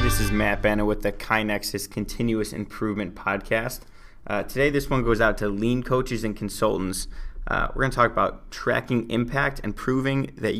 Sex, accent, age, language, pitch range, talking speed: male, American, 20-39, English, 105-125 Hz, 175 wpm